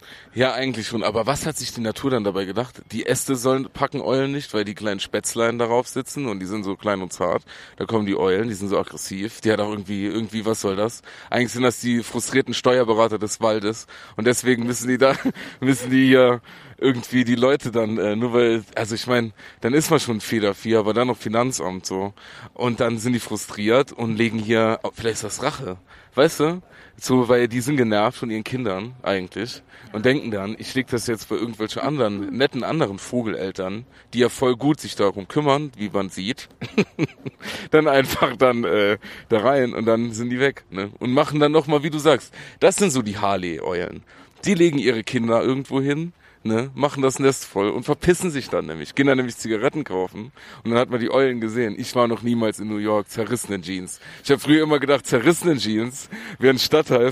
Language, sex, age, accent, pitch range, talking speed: German, male, 30-49, German, 110-135 Hz, 210 wpm